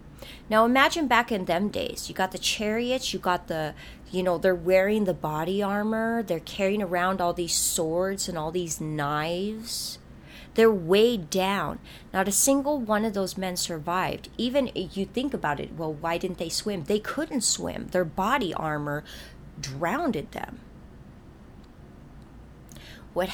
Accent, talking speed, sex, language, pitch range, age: American, 155 wpm, female, English, 170-215 Hz, 30-49